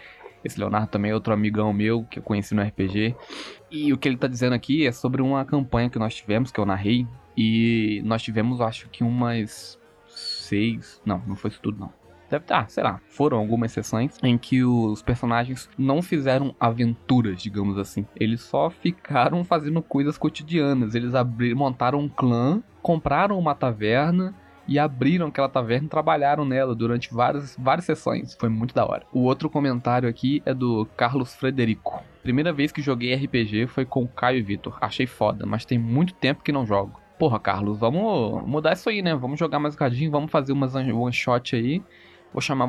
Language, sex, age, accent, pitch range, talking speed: Portuguese, male, 20-39, Brazilian, 115-140 Hz, 190 wpm